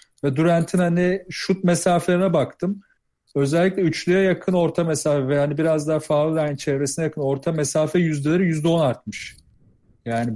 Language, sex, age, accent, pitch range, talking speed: Turkish, male, 40-59, native, 145-175 Hz, 150 wpm